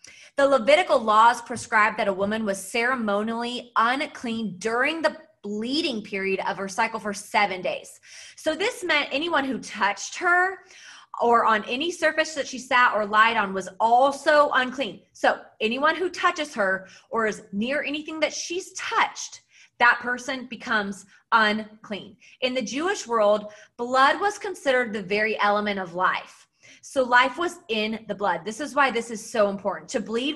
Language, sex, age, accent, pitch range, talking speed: English, female, 30-49, American, 210-285 Hz, 165 wpm